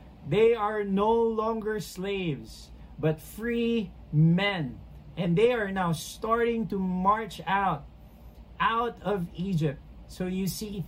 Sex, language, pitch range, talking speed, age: male, English, 150-210 Hz, 120 wpm, 40-59